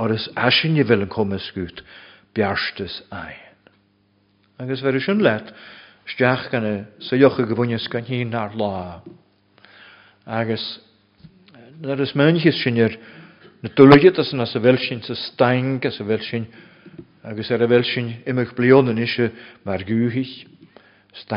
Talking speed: 105 wpm